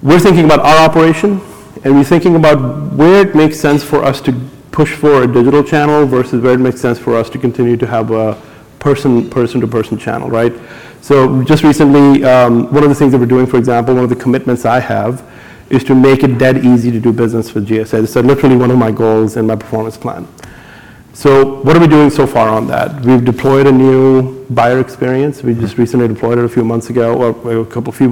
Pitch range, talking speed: 120-140 Hz, 225 wpm